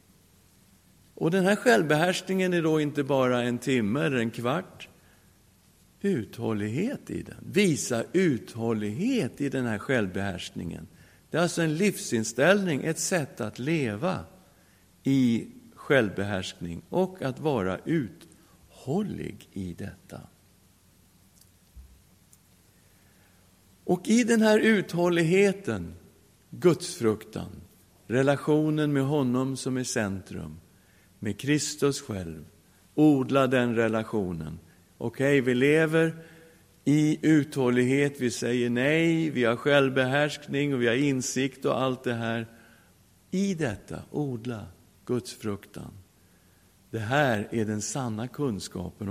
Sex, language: male, English